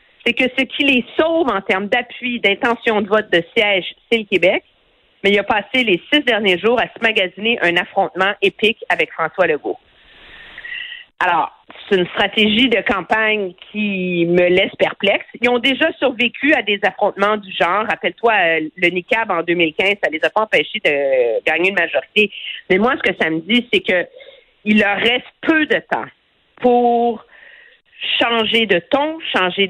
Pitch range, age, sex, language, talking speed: 185-250 Hz, 50-69, female, French, 175 wpm